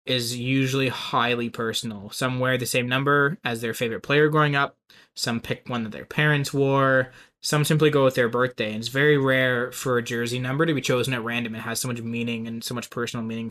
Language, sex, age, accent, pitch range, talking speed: English, male, 20-39, American, 120-135 Hz, 225 wpm